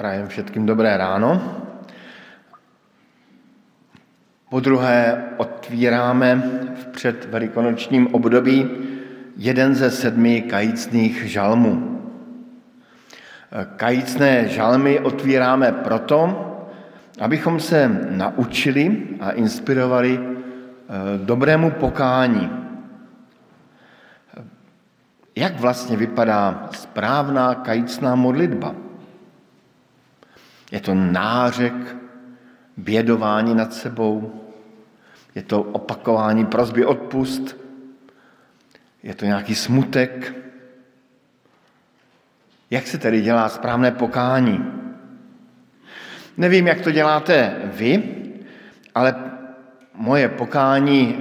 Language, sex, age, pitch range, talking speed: Slovak, male, 50-69, 115-135 Hz, 75 wpm